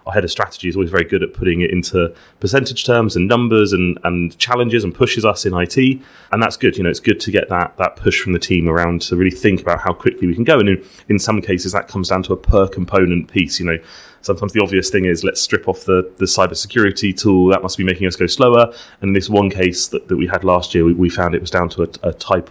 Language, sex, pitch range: English, male, 85-100 Hz